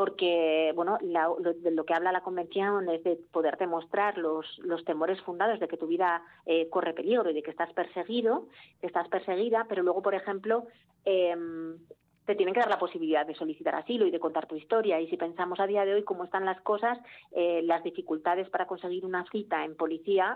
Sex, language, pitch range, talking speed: female, Spanish, 170-200 Hz, 210 wpm